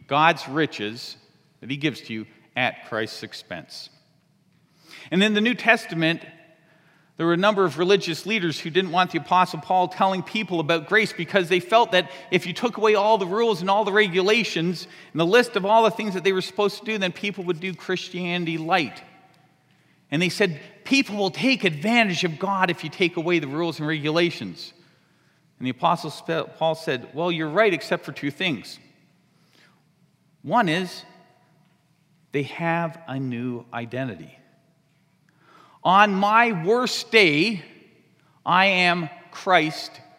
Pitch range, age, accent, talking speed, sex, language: 155-195 Hz, 40-59, American, 165 wpm, male, English